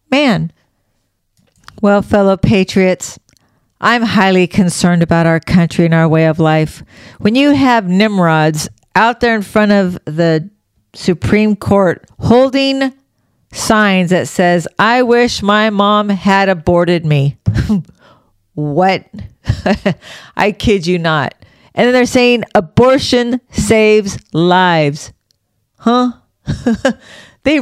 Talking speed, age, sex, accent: 115 wpm, 50-69, female, American